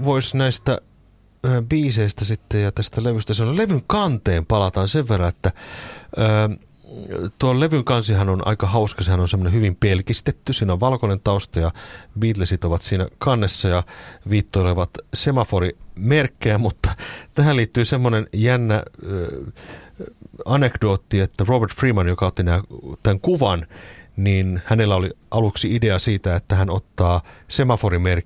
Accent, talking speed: native, 130 wpm